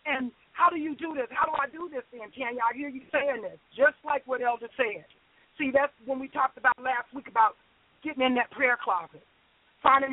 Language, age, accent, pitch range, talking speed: English, 40-59, American, 250-315 Hz, 225 wpm